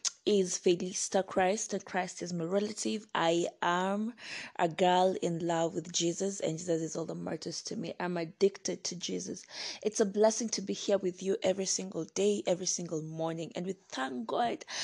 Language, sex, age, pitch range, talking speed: English, female, 20-39, 170-200 Hz, 185 wpm